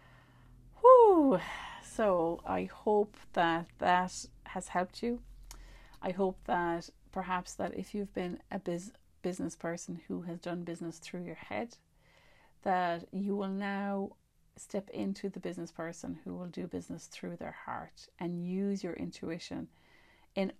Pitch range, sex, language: 170-210 Hz, female, English